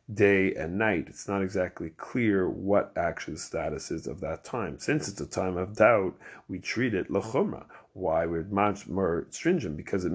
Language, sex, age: English, male, 40-59